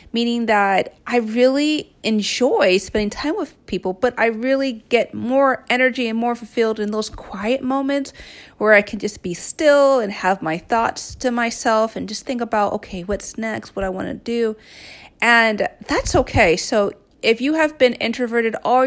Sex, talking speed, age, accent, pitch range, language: female, 180 wpm, 30-49, American, 195-245 Hz, English